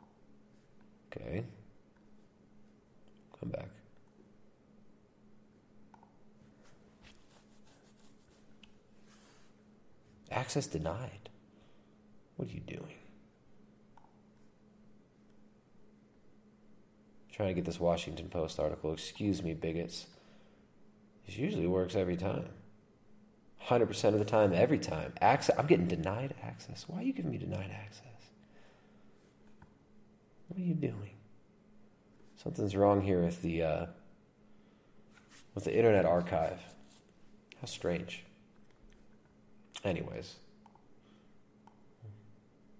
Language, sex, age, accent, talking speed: English, male, 40-59, American, 85 wpm